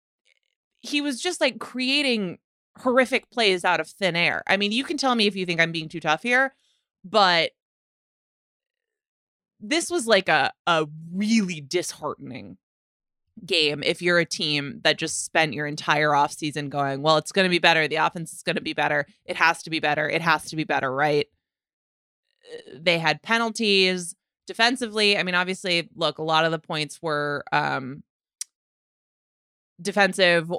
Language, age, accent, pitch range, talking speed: English, 20-39, American, 150-185 Hz, 170 wpm